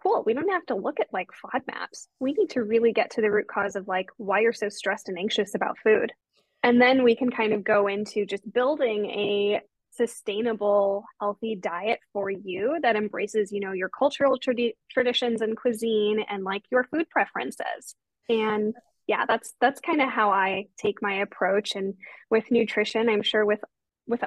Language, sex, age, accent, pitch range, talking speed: English, female, 10-29, American, 200-240 Hz, 190 wpm